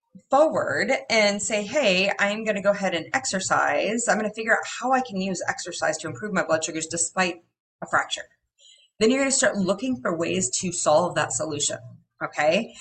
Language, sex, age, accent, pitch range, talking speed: English, female, 30-49, American, 165-260 Hz, 195 wpm